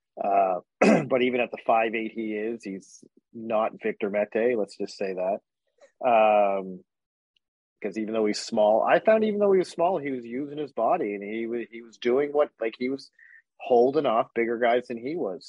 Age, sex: 40-59, male